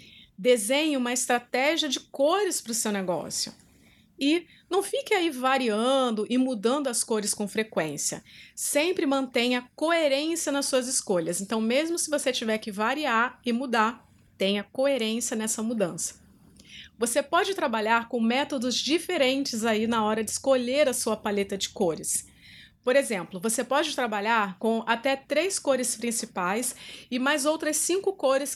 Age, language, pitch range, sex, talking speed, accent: 30-49, Portuguese, 225-285 Hz, female, 145 wpm, Brazilian